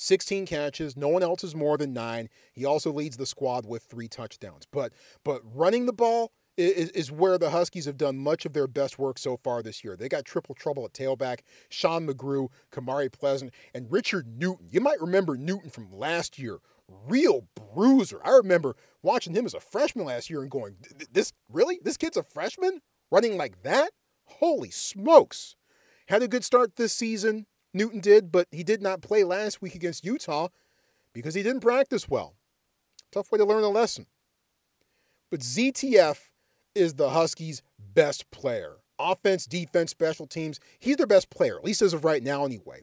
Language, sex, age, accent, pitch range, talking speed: English, male, 40-59, American, 135-215 Hz, 185 wpm